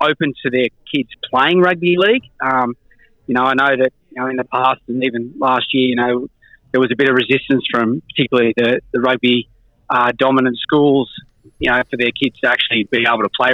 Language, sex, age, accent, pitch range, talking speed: English, male, 30-49, Australian, 125-140 Hz, 210 wpm